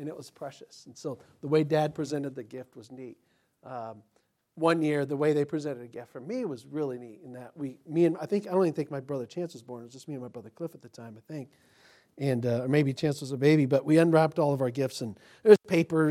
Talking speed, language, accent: 285 wpm, English, American